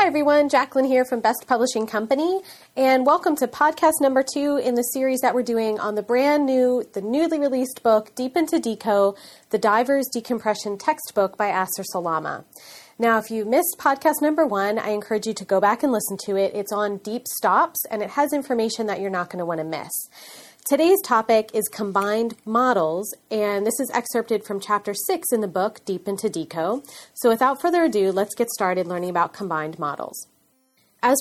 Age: 30-49